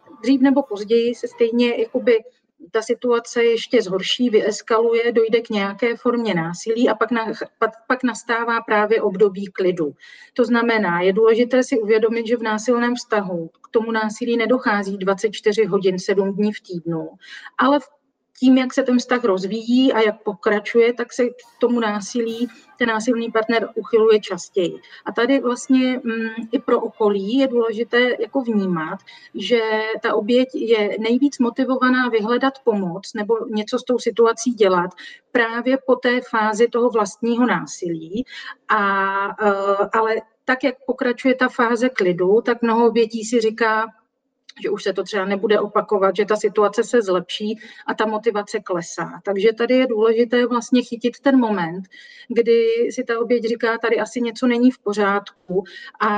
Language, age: Czech, 40-59